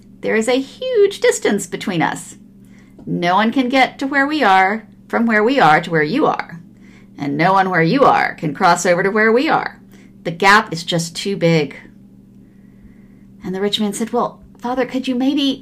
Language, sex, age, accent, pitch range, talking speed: English, female, 40-59, American, 170-250 Hz, 200 wpm